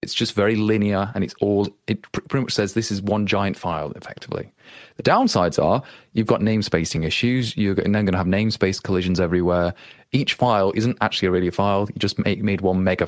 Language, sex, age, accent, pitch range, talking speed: English, male, 30-49, British, 95-115 Hz, 200 wpm